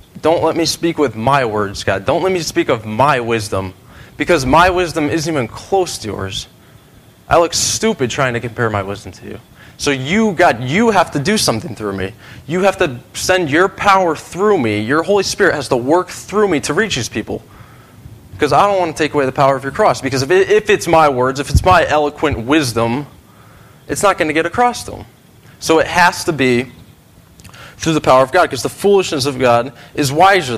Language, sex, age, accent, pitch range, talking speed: English, male, 20-39, American, 105-155 Hz, 215 wpm